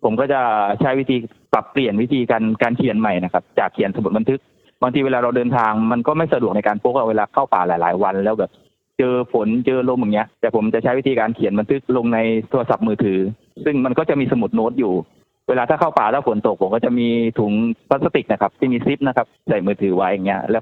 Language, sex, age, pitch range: Thai, male, 20-39, 110-130 Hz